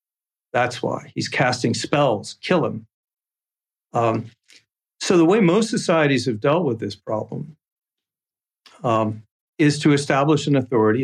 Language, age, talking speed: English, 50-69, 130 wpm